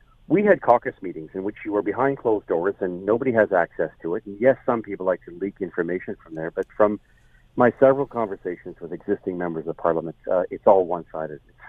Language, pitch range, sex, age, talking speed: English, 95-115 Hz, male, 50-69, 220 wpm